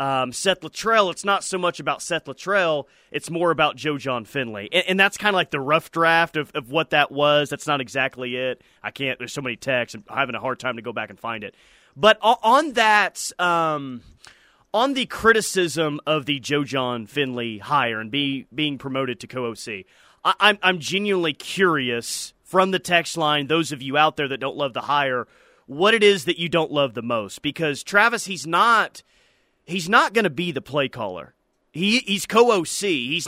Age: 30-49